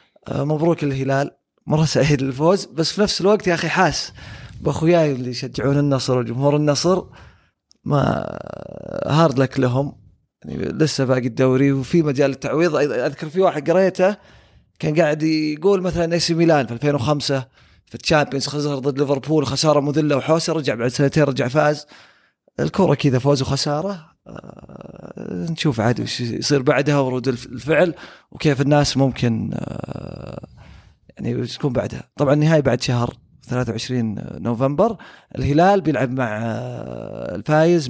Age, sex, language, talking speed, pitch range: 20-39, male, Arabic, 135 wpm, 130-165 Hz